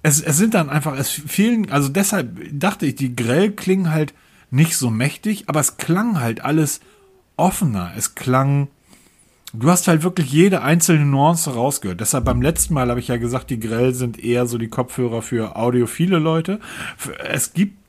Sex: male